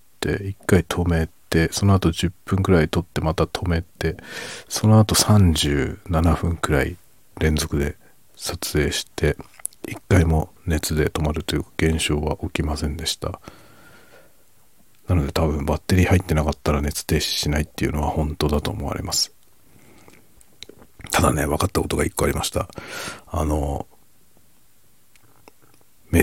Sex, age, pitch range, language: male, 50-69, 75-95 Hz, Japanese